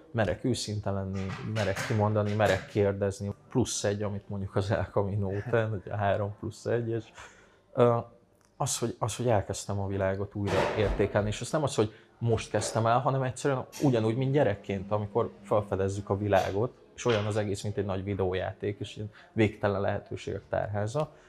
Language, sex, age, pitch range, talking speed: Hungarian, male, 20-39, 100-115 Hz, 165 wpm